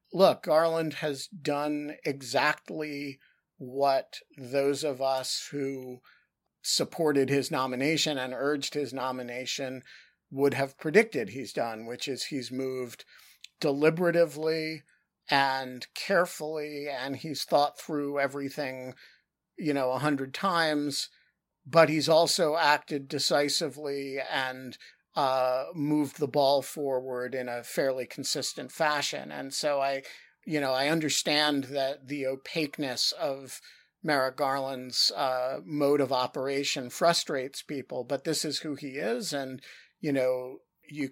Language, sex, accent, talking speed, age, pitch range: English, male, American, 125 wpm, 50-69, 130-150 Hz